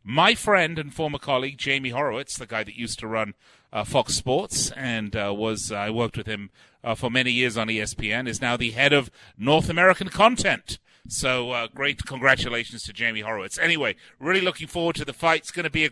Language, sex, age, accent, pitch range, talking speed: English, male, 40-59, British, 120-160 Hz, 210 wpm